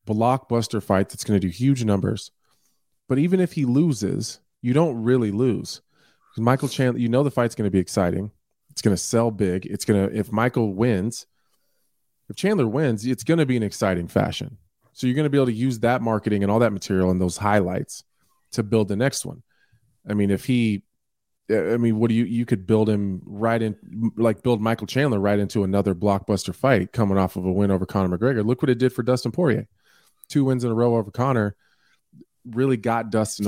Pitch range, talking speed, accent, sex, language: 100-120 Hz, 215 wpm, American, male, English